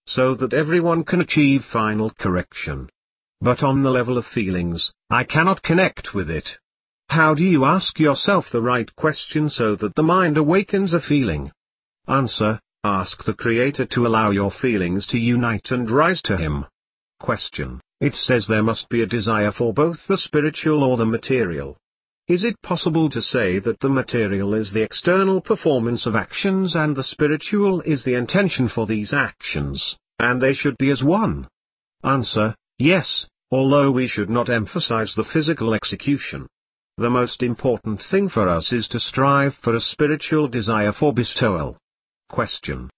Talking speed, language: 165 wpm, English